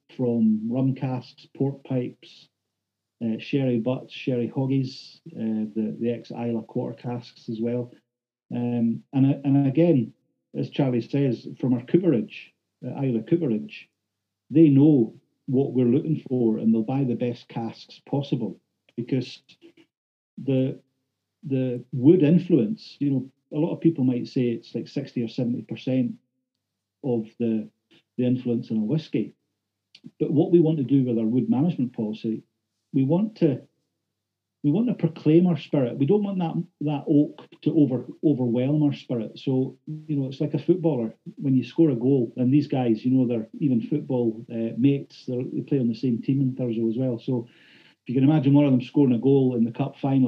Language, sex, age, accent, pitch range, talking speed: English, male, 40-59, British, 120-140 Hz, 180 wpm